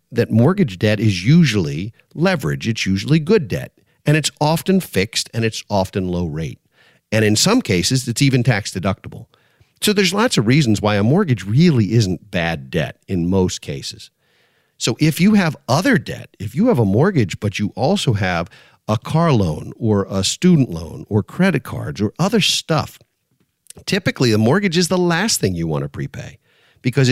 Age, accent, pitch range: 50-69, American, 100-150 Hz